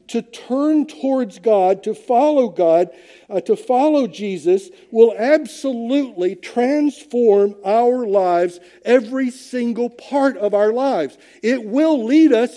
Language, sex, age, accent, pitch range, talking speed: English, male, 50-69, American, 215-285 Hz, 125 wpm